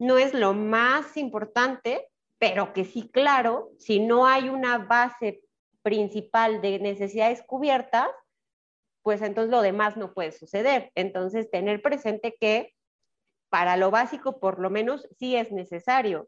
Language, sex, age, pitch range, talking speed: Spanish, female, 30-49, 200-245 Hz, 140 wpm